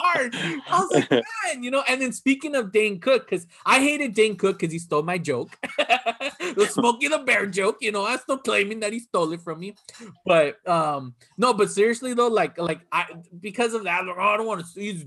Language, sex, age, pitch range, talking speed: English, male, 30-49, 160-240 Hz, 220 wpm